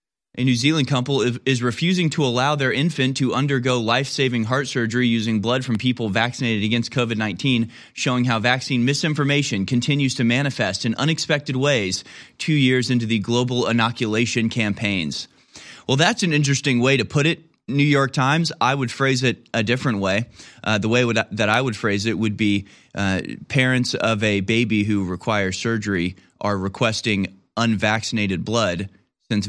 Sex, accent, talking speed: male, American, 165 wpm